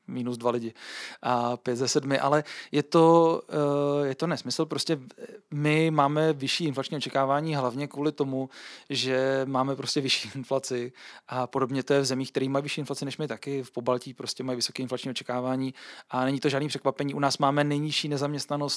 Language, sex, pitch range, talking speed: Czech, male, 135-150 Hz, 180 wpm